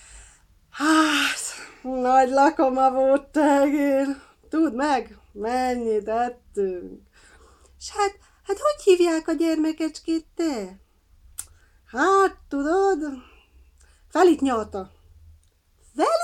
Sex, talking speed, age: female, 85 wpm, 40-59